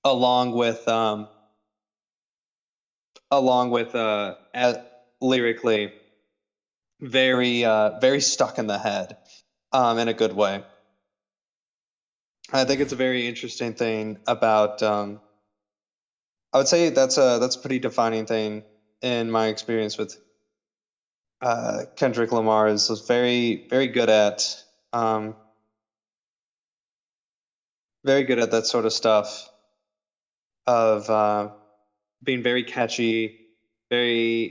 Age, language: 20-39, English